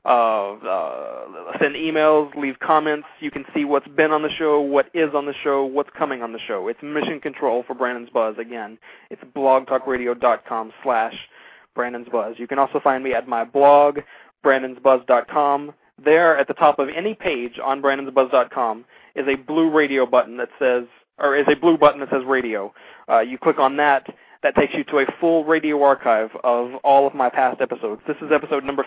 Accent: American